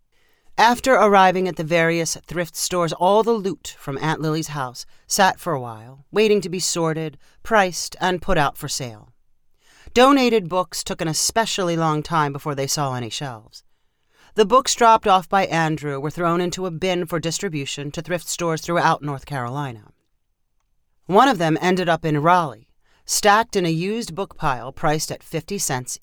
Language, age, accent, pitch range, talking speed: English, 40-59, American, 145-195 Hz, 175 wpm